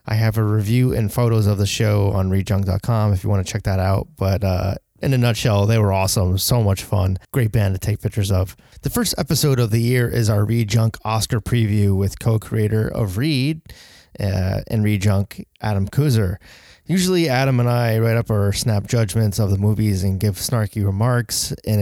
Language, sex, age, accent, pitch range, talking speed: English, male, 20-39, American, 100-120 Hz, 205 wpm